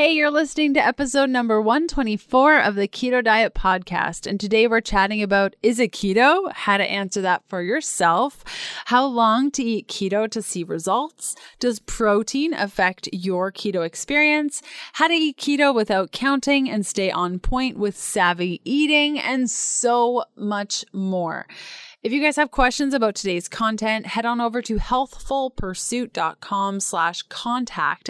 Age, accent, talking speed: 20-39, American, 155 wpm